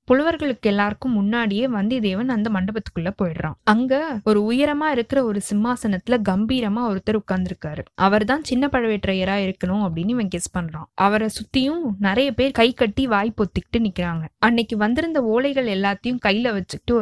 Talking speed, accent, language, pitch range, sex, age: 125 wpm, native, Tamil, 200-260 Hz, female, 20-39